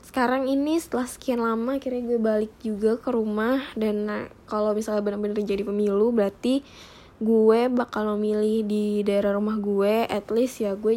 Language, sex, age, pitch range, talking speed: Indonesian, female, 10-29, 220-255 Hz, 165 wpm